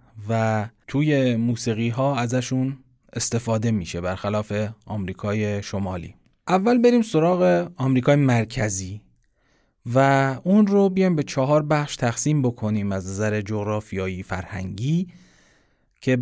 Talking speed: 105 wpm